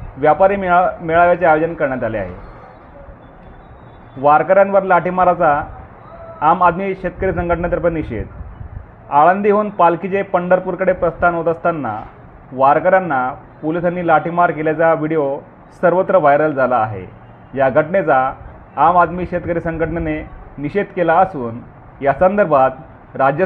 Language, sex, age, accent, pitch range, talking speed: Marathi, male, 40-59, native, 130-180 Hz, 100 wpm